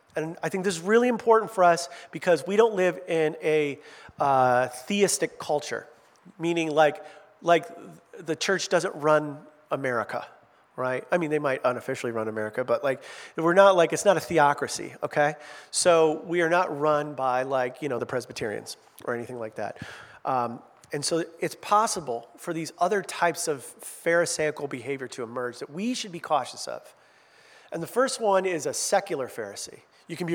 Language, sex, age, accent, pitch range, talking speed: English, male, 40-59, American, 145-195 Hz, 180 wpm